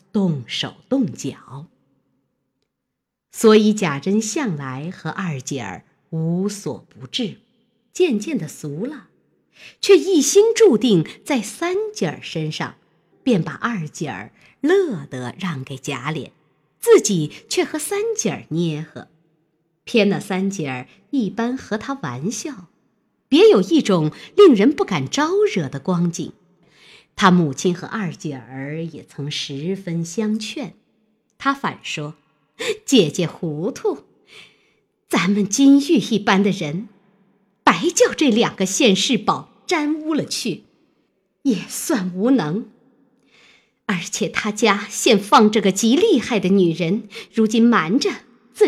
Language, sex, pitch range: Chinese, female, 175-255 Hz